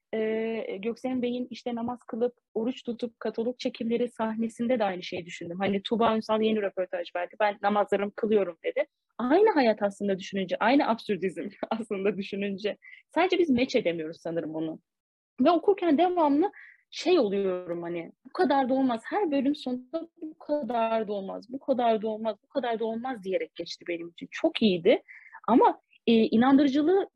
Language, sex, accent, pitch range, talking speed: Turkish, female, native, 205-275 Hz, 160 wpm